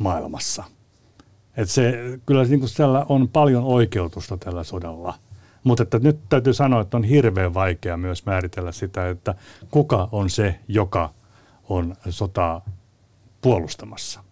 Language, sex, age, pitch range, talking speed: Finnish, male, 60-79, 90-115 Hz, 130 wpm